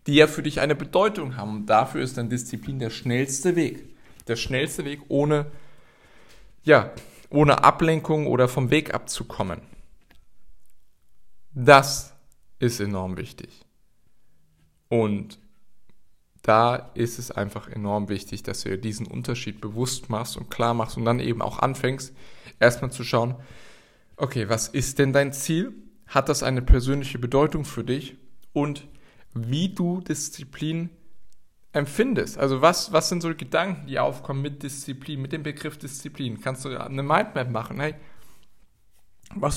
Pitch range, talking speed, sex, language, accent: 110-145 Hz, 140 wpm, male, German, German